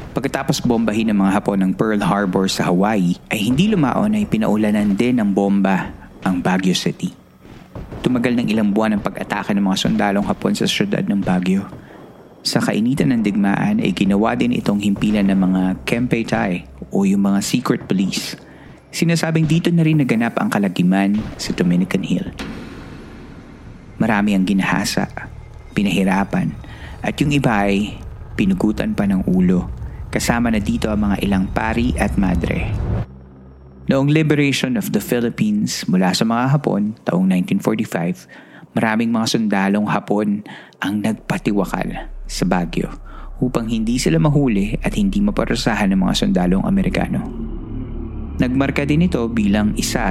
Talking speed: 140 wpm